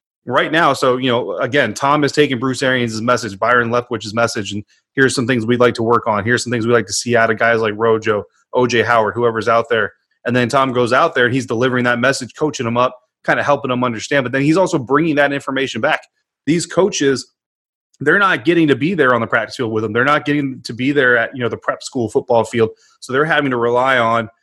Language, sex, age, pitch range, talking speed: English, male, 30-49, 115-135 Hz, 250 wpm